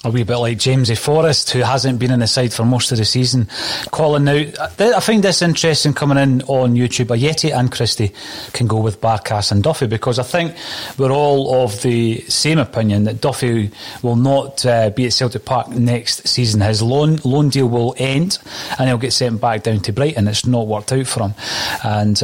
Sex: male